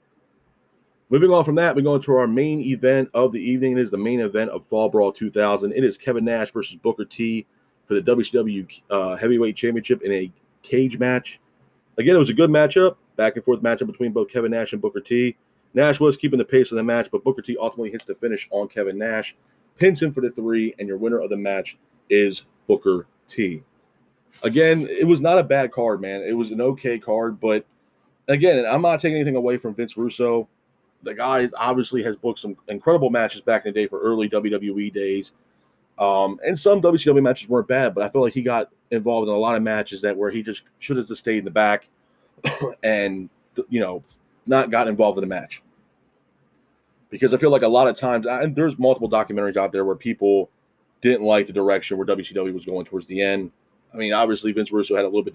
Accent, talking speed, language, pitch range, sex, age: American, 215 wpm, English, 105-130 Hz, male, 30-49